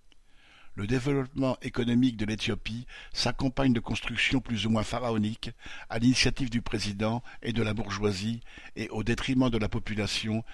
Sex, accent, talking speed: male, French, 150 wpm